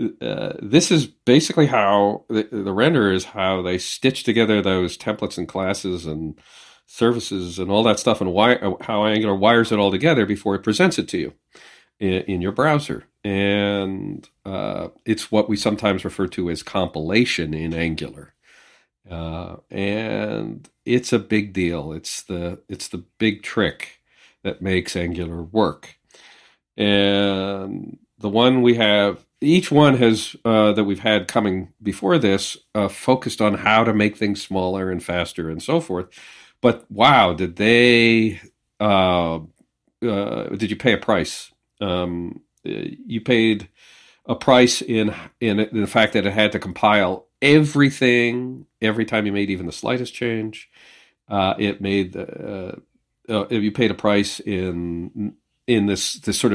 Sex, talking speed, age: male, 155 wpm, 50-69